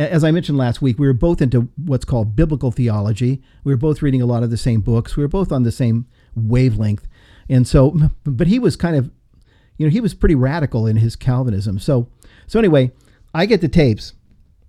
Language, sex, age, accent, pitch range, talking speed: English, male, 50-69, American, 115-150 Hz, 215 wpm